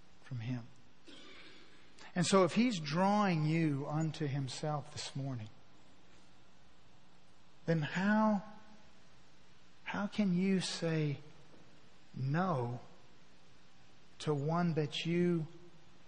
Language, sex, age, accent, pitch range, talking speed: English, male, 50-69, American, 140-200 Hz, 85 wpm